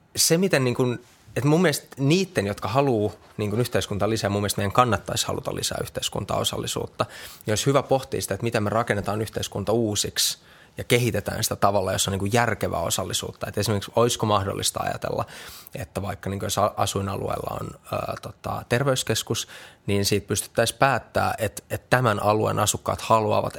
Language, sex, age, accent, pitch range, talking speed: Finnish, male, 20-39, native, 100-115 Hz, 165 wpm